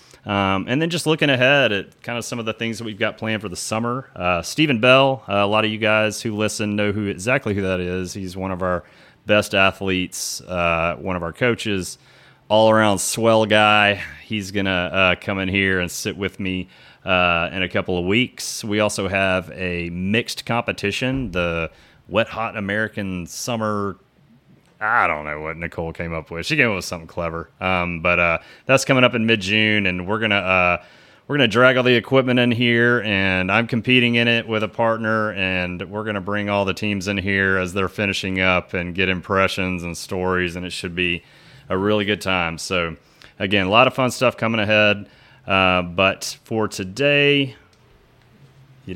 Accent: American